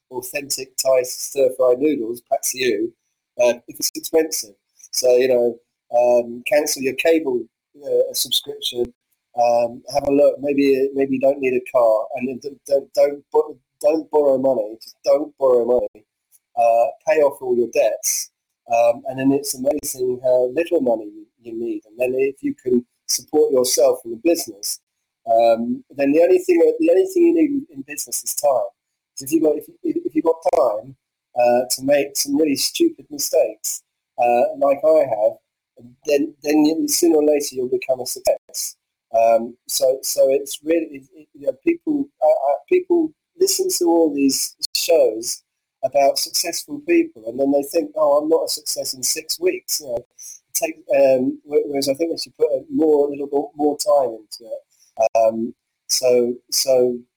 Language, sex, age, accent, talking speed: English, male, 30-49, British, 175 wpm